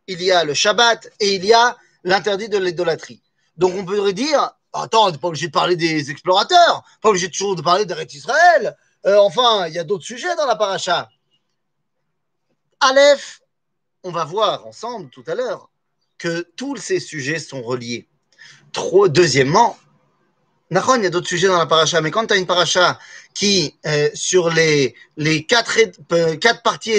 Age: 30-49